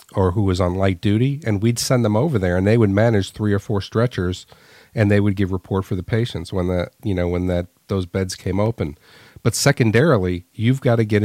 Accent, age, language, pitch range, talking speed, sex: American, 40-59, English, 100-125 Hz, 235 wpm, male